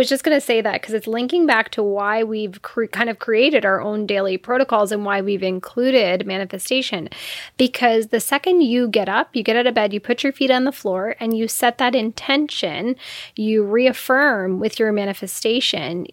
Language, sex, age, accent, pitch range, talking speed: English, female, 10-29, American, 205-255 Hz, 205 wpm